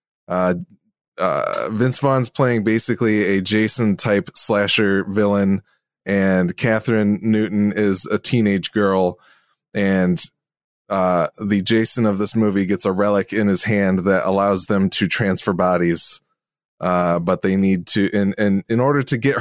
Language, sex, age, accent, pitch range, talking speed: English, male, 20-39, American, 95-115 Hz, 150 wpm